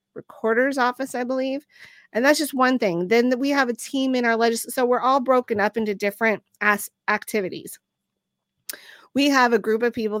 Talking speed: 180 wpm